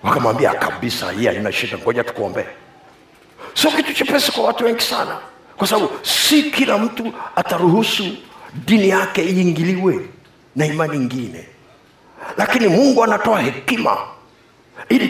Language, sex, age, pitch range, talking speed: Swahili, male, 50-69, 175-240 Hz, 120 wpm